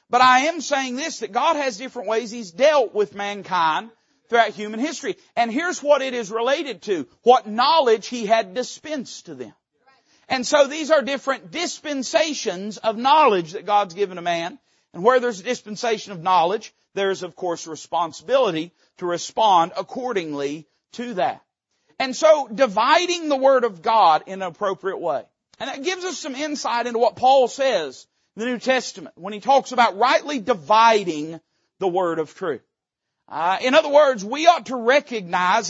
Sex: male